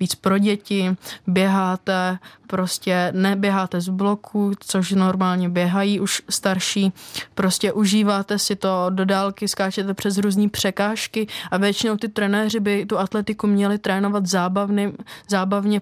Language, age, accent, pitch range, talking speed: Czech, 20-39, native, 190-210 Hz, 130 wpm